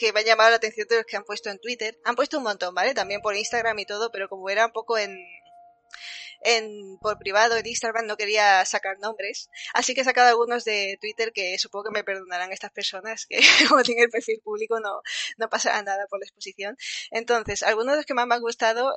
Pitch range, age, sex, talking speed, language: 200-235 Hz, 20-39, female, 235 wpm, Spanish